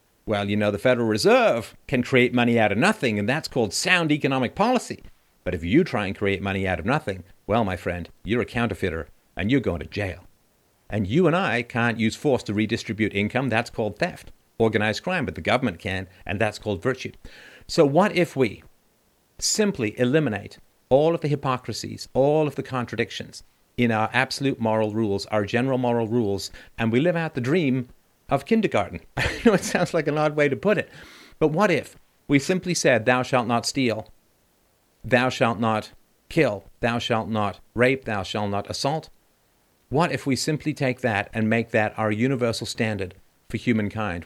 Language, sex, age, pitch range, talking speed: English, male, 50-69, 105-130 Hz, 190 wpm